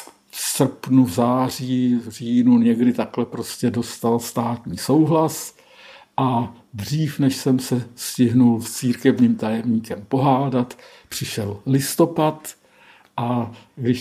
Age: 50-69